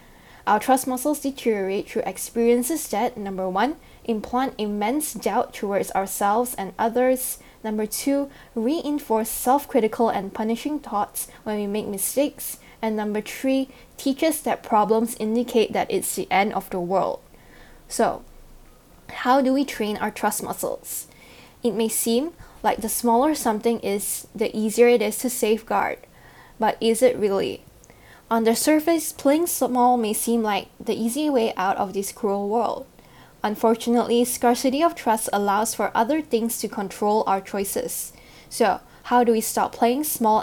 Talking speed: 155 wpm